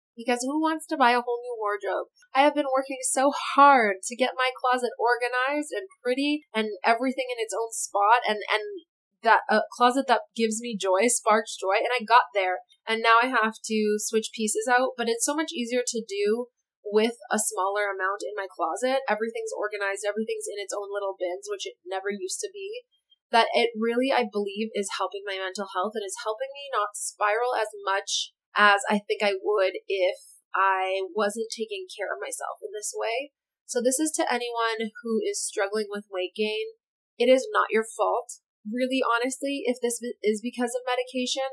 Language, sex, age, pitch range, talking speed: English, female, 20-39, 210-265 Hz, 195 wpm